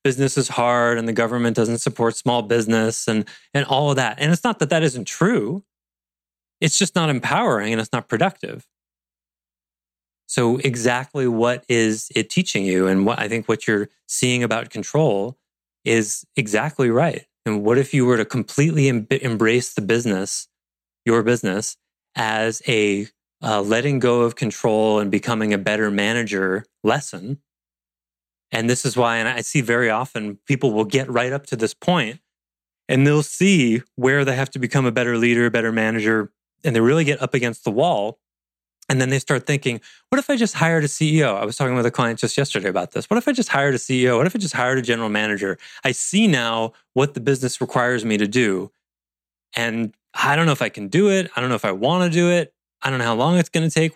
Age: 30-49